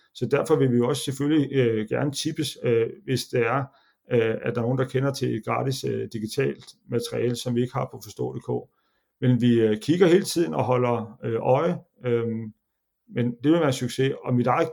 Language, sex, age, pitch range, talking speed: Danish, male, 40-59, 125-145 Hz, 210 wpm